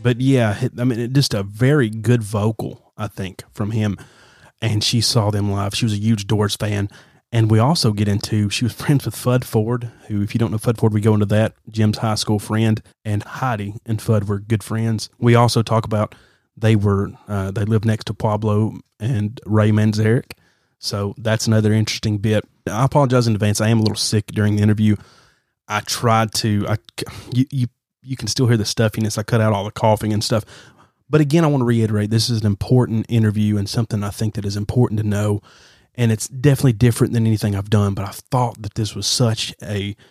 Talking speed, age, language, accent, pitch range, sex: 215 wpm, 30-49, English, American, 105-120 Hz, male